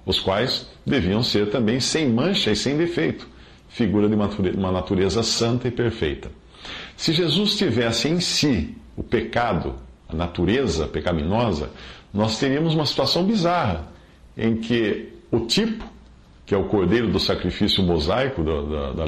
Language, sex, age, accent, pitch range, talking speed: Portuguese, male, 50-69, Brazilian, 90-130 Hz, 140 wpm